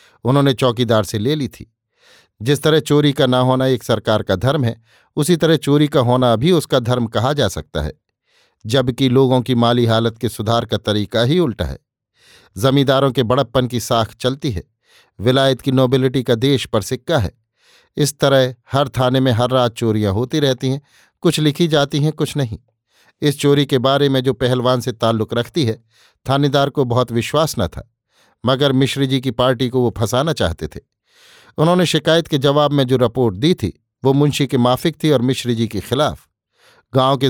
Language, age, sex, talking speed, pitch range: Hindi, 50-69, male, 195 wpm, 120-140 Hz